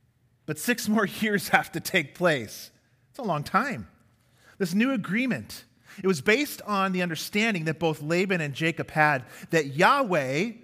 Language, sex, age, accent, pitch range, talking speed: English, male, 40-59, American, 145-210 Hz, 165 wpm